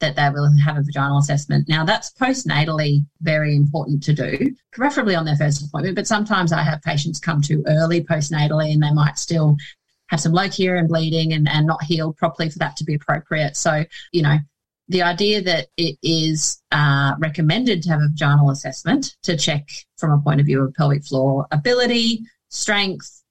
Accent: Australian